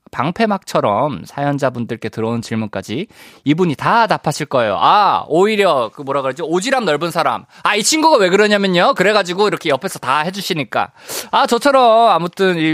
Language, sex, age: Korean, male, 20-39